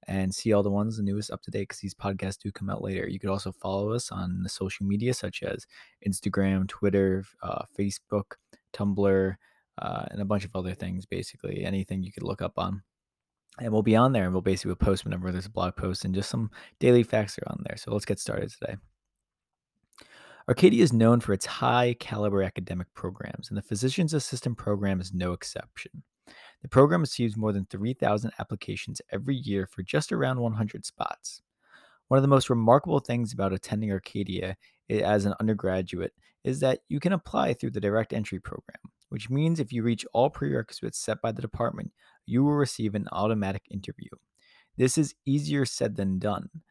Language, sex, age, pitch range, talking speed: English, male, 20-39, 95-120 Hz, 195 wpm